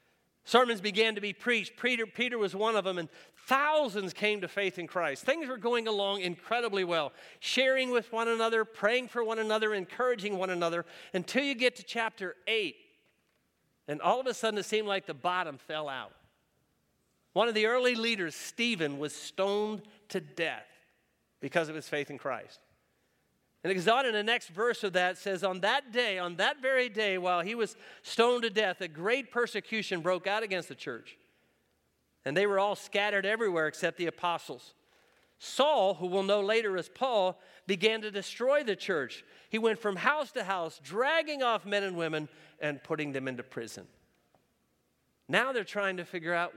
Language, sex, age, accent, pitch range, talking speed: English, male, 50-69, American, 180-235 Hz, 185 wpm